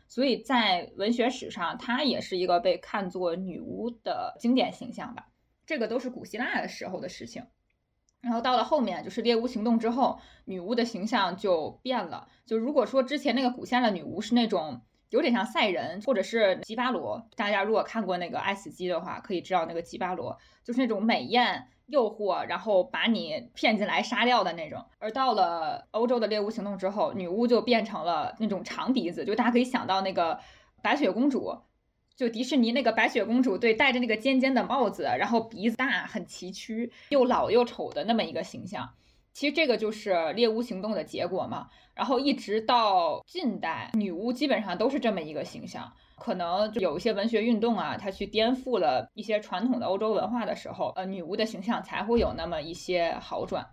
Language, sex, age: Chinese, female, 20-39